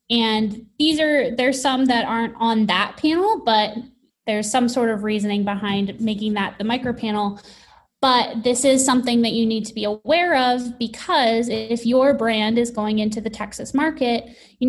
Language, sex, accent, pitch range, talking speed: English, female, American, 220-265 Hz, 180 wpm